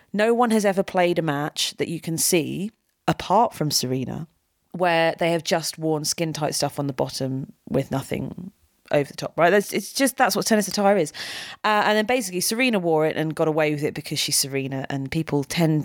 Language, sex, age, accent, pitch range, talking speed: English, female, 30-49, British, 150-195 Hz, 210 wpm